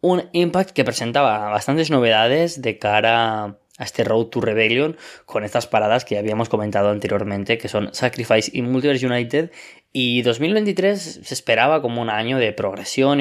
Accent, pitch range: Spanish, 115-145 Hz